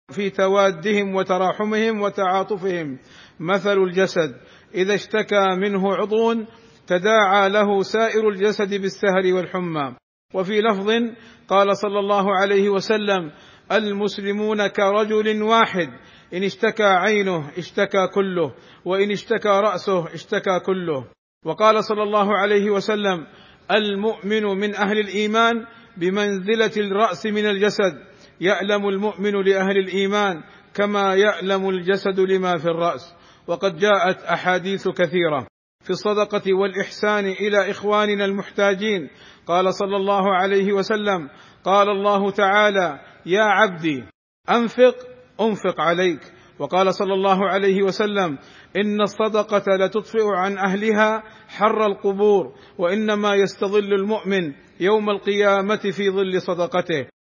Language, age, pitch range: Arabic, 50-69, 190-210 Hz